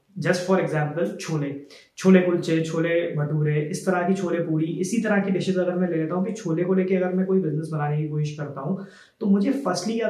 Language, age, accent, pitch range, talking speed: Hindi, 20-39, native, 165-205 Hz, 230 wpm